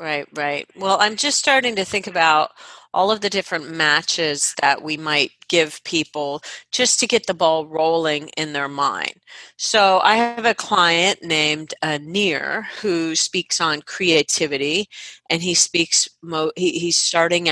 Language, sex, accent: English, female, American